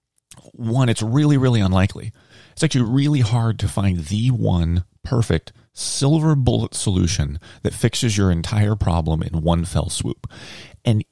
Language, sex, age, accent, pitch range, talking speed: English, male, 30-49, American, 95-125 Hz, 145 wpm